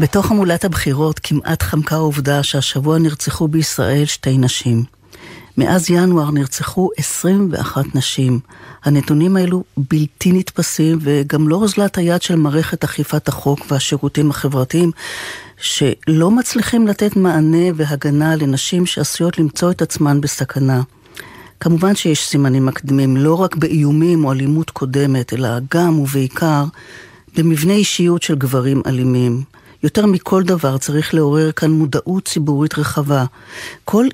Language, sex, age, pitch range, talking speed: Hebrew, female, 40-59, 140-170 Hz, 120 wpm